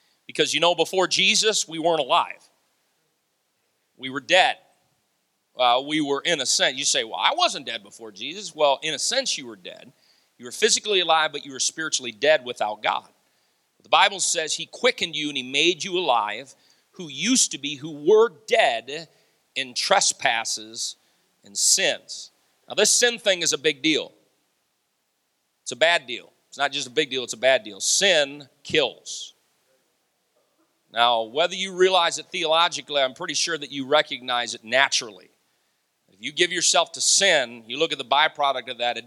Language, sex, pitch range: English, male, 130-175 Hz